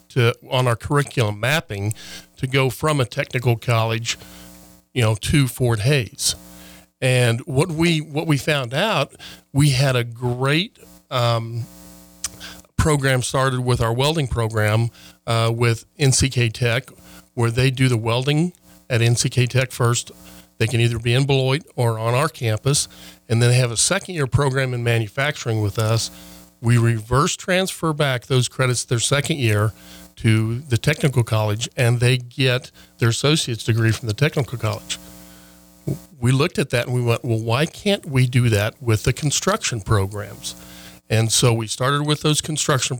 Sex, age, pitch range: male, 40-59, 110-135 Hz